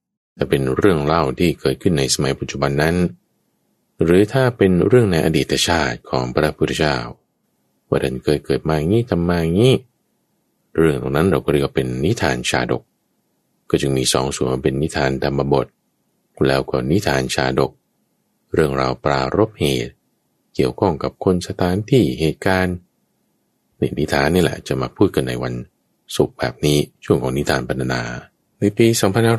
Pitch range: 65-90 Hz